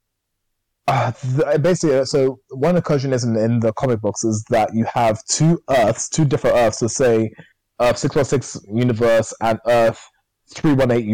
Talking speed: 155 wpm